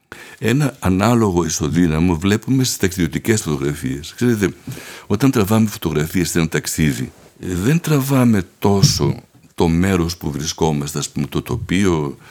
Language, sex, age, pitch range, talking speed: Greek, male, 60-79, 80-110 Hz, 110 wpm